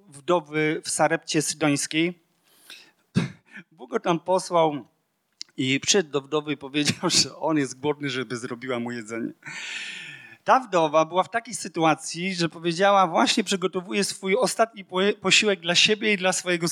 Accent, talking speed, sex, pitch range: native, 145 wpm, male, 170-230 Hz